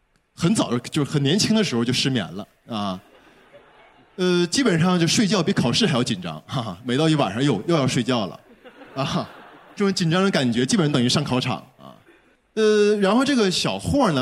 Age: 20-39